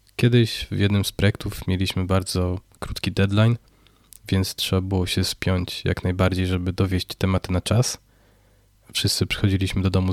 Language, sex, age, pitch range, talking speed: Polish, male, 20-39, 90-105 Hz, 150 wpm